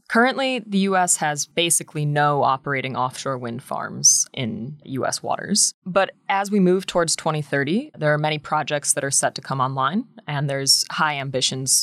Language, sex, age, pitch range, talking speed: English, female, 20-39, 135-175 Hz, 165 wpm